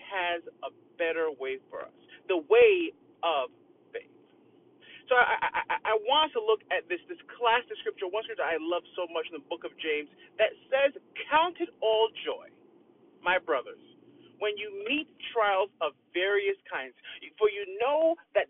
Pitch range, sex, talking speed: 255-410 Hz, male, 170 wpm